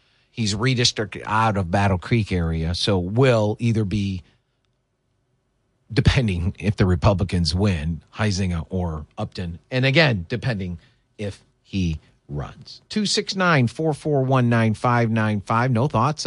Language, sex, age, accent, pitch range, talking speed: English, male, 40-59, American, 105-135 Hz, 105 wpm